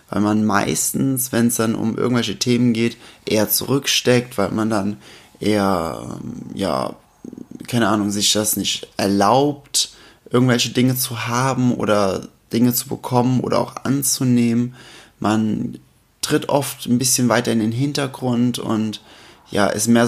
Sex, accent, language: male, German, German